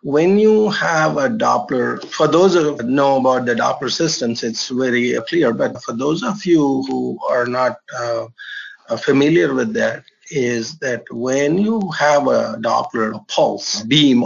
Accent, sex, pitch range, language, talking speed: Indian, male, 120-150 Hz, English, 155 wpm